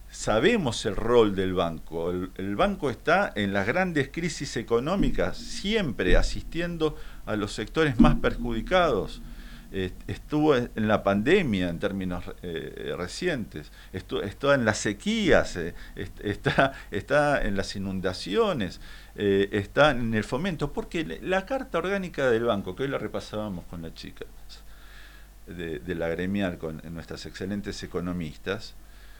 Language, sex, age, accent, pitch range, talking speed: Spanish, male, 50-69, Argentinian, 90-110 Hz, 135 wpm